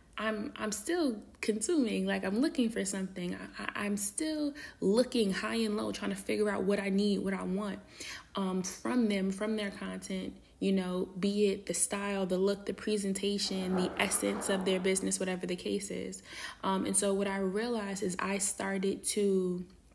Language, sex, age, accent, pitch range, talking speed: English, female, 20-39, American, 190-220 Hz, 185 wpm